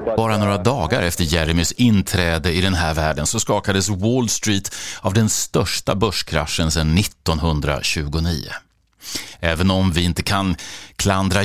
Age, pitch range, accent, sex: 30-49, 85-115 Hz, Swedish, male